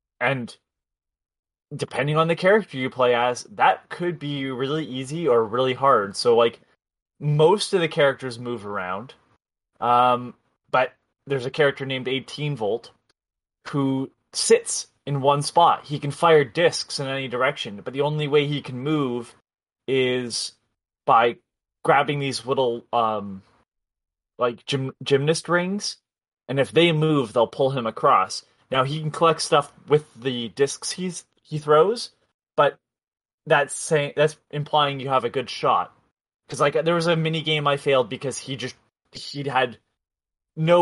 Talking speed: 150 wpm